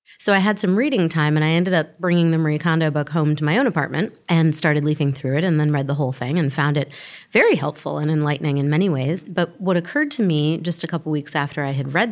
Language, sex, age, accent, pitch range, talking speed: English, female, 30-49, American, 150-180 Hz, 265 wpm